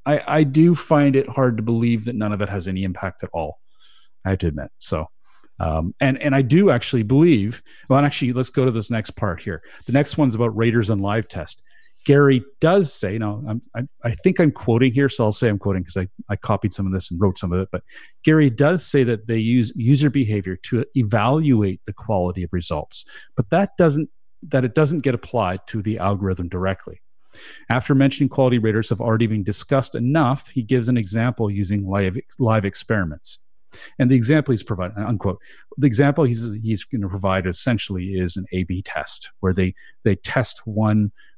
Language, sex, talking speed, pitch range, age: English, male, 205 wpm, 95-130 Hz, 40-59